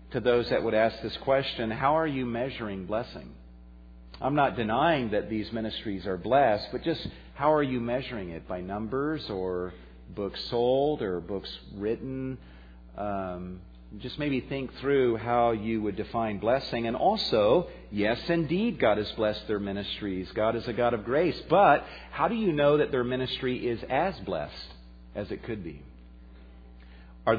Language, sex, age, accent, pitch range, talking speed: English, male, 50-69, American, 95-130 Hz, 165 wpm